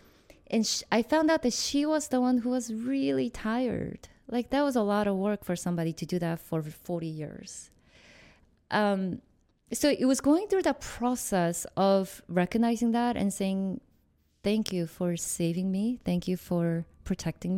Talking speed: 170 wpm